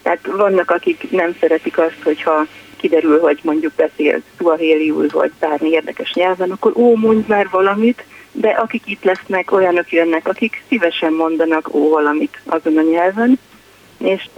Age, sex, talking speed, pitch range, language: 30-49, female, 150 wpm, 155-195 Hz, Hungarian